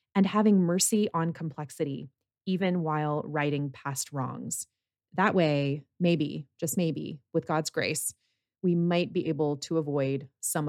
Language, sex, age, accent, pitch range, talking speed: English, female, 30-49, American, 150-185 Hz, 140 wpm